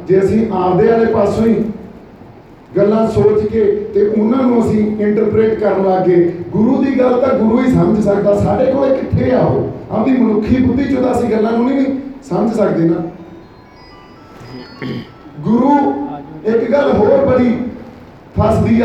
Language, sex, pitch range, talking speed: Punjabi, male, 180-225 Hz, 155 wpm